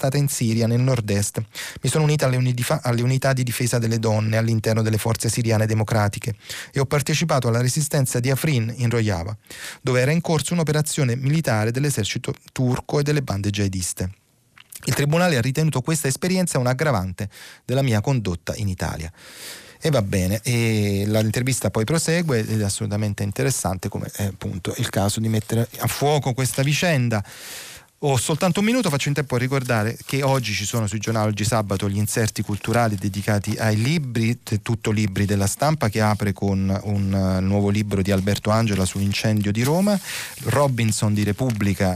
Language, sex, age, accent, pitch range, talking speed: Italian, male, 30-49, native, 100-135 Hz, 170 wpm